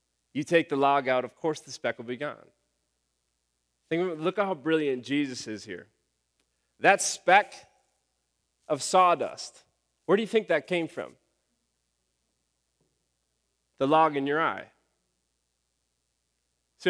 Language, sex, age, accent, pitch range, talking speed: English, male, 30-49, American, 115-165 Hz, 135 wpm